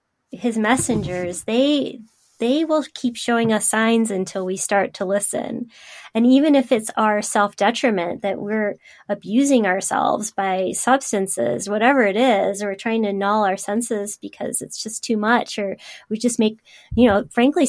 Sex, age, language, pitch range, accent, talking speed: female, 20-39, English, 195-235 Hz, American, 165 wpm